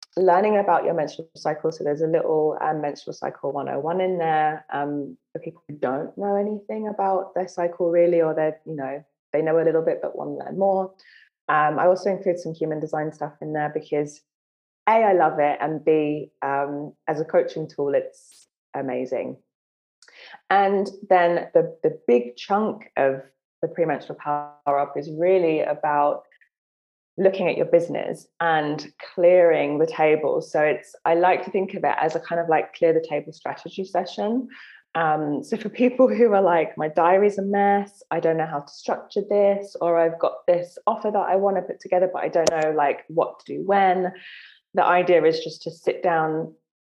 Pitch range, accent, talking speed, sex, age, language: 150-190 Hz, British, 190 wpm, female, 20-39, English